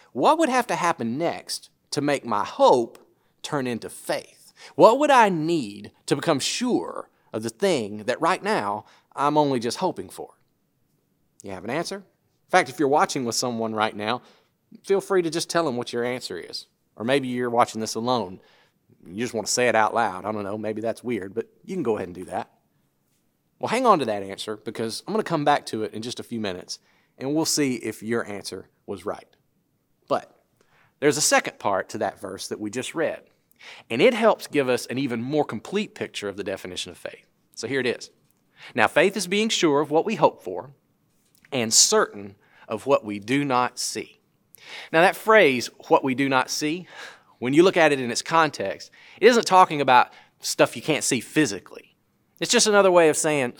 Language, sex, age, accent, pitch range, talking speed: English, male, 40-59, American, 115-170 Hz, 210 wpm